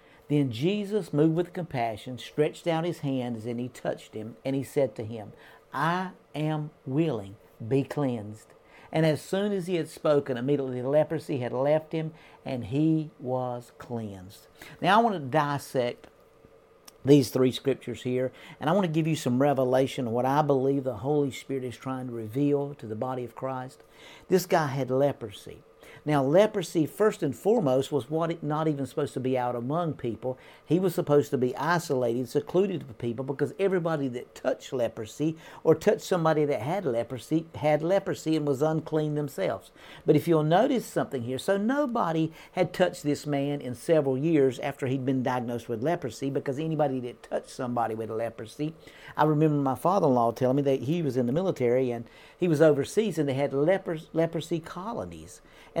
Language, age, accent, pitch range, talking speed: English, 50-69, American, 130-160 Hz, 180 wpm